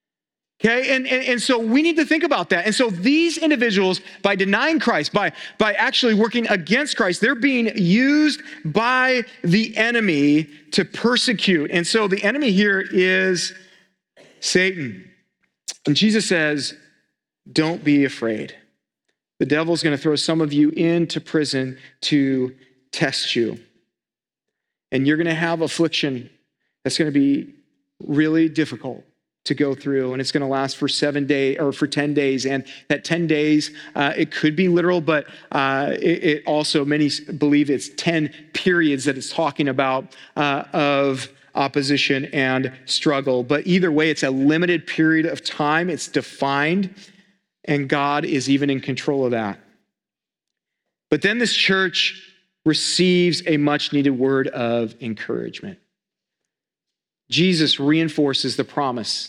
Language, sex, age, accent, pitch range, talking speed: English, male, 40-59, American, 140-195 Hz, 150 wpm